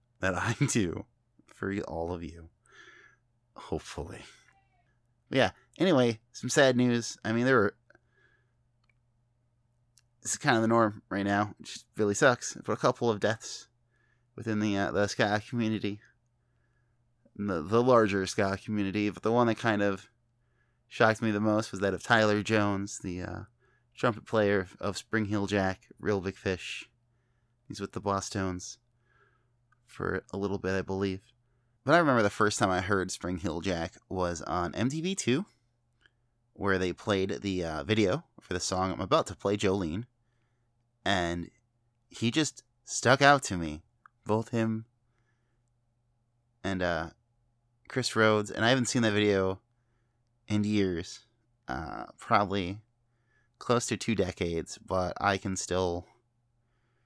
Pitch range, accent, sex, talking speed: 100-120 Hz, American, male, 145 wpm